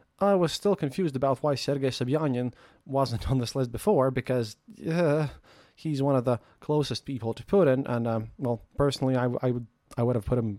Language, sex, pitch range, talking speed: English, male, 115-150 Hz, 205 wpm